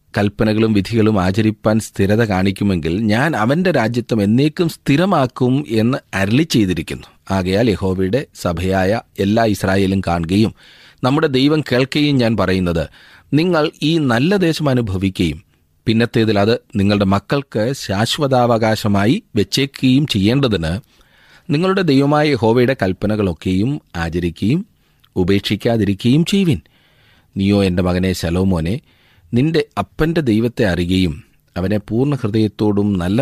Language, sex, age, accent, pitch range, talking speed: Malayalam, male, 30-49, native, 90-125 Hz, 95 wpm